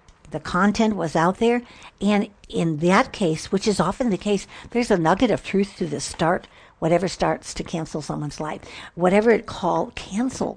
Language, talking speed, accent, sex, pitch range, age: English, 180 wpm, American, female, 140-180 Hz, 60-79